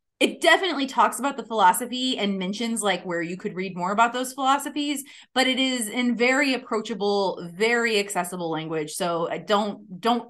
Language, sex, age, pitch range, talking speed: English, female, 20-39, 195-275 Hz, 175 wpm